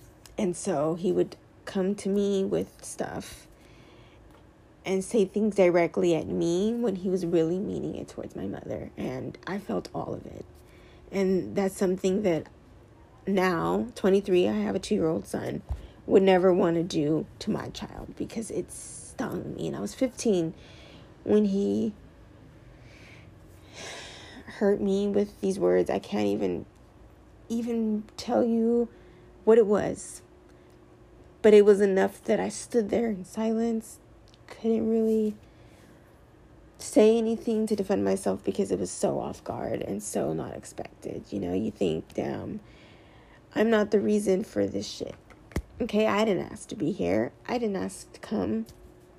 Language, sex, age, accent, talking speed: English, female, 20-39, American, 150 wpm